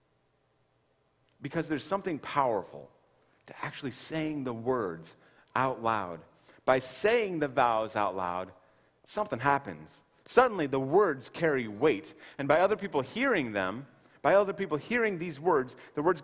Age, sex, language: 30-49, male, English